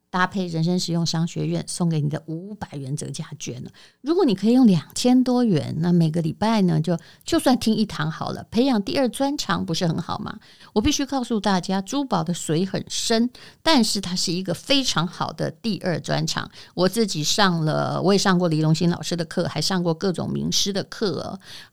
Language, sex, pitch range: Chinese, female, 165-205 Hz